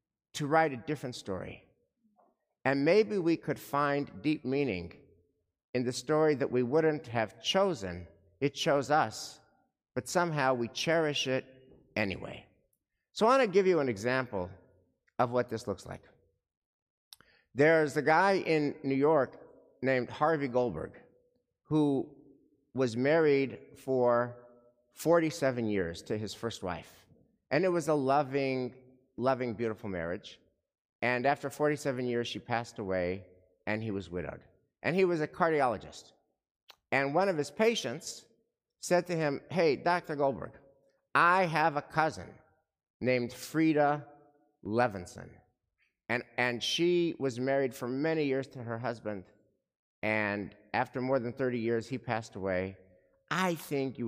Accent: American